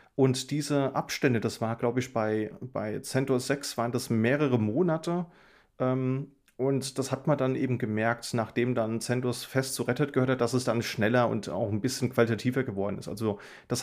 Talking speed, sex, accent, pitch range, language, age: 190 wpm, male, German, 115-145 Hz, German, 30-49